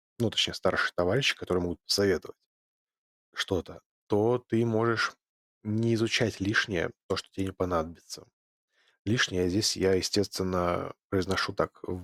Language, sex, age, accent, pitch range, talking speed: Russian, male, 20-39, native, 90-105 Hz, 130 wpm